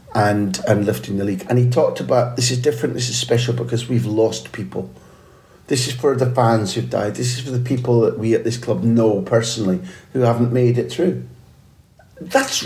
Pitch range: 110-125 Hz